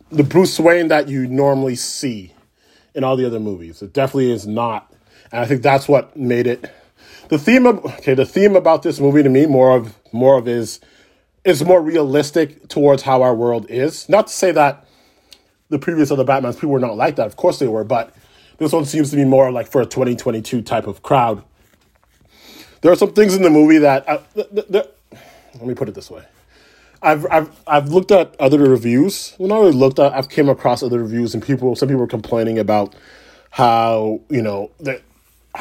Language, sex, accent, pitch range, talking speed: English, male, American, 105-140 Hz, 210 wpm